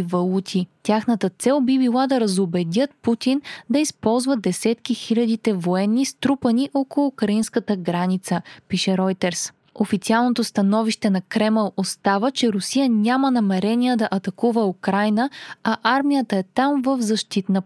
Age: 20-39